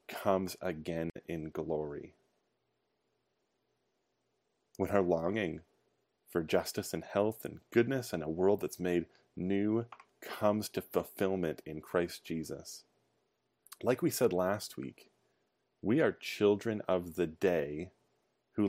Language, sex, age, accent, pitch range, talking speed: English, male, 30-49, American, 90-110 Hz, 120 wpm